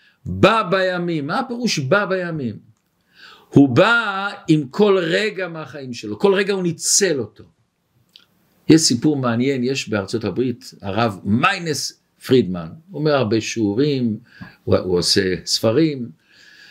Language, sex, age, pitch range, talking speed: Hebrew, male, 50-69, 110-165 Hz, 125 wpm